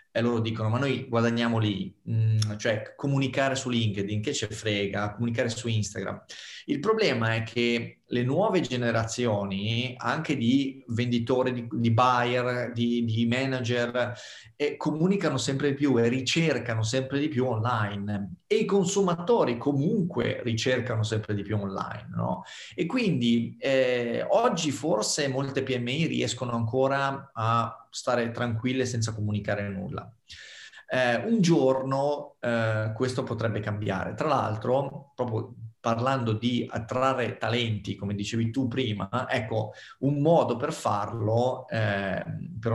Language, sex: Italian, male